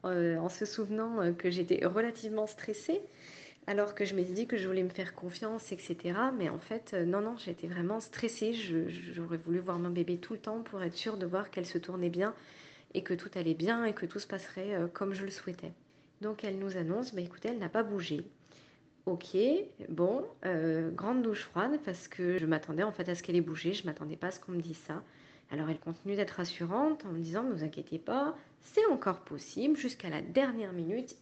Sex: female